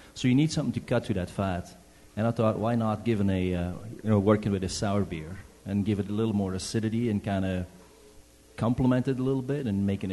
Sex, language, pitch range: male, English, 90-110 Hz